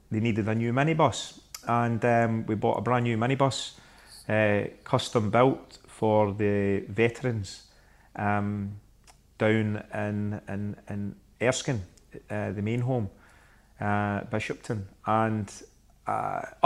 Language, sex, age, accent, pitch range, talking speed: English, male, 30-49, British, 105-120 Hz, 120 wpm